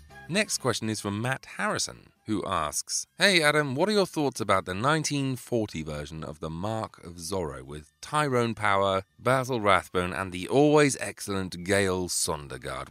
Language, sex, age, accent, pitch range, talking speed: English, male, 30-49, British, 90-130 Hz, 160 wpm